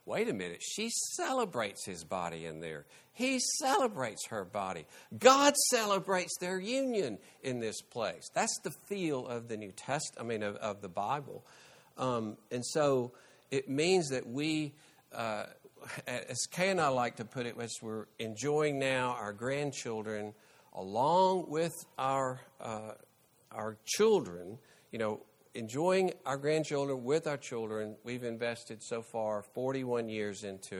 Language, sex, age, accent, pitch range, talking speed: English, male, 50-69, American, 105-150 Hz, 150 wpm